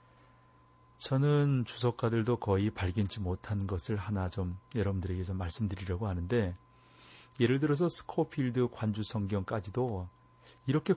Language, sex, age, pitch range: Korean, male, 40-59, 95-125 Hz